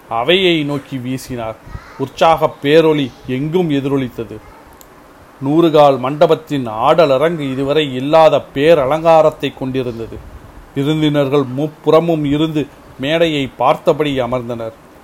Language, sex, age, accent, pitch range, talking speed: Tamil, male, 40-59, native, 125-155 Hz, 80 wpm